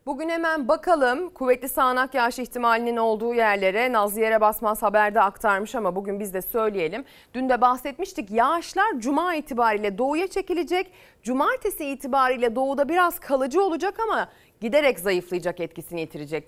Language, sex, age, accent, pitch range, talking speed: Turkish, female, 30-49, native, 210-285 Hz, 140 wpm